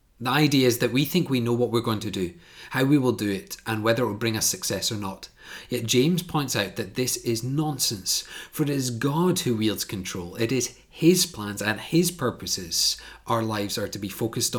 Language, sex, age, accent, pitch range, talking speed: English, male, 30-49, British, 105-135 Hz, 225 wpm